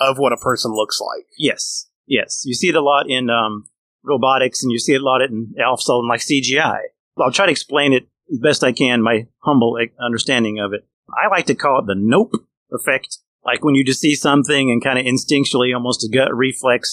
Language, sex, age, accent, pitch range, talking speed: English, male, 30-49, American, 115-140 Hz, 220 wpm